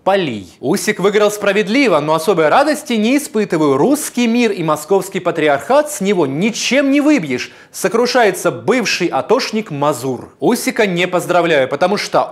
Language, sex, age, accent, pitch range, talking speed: Russian, male, 30-49, native, 170-235 Hz, 130 wpm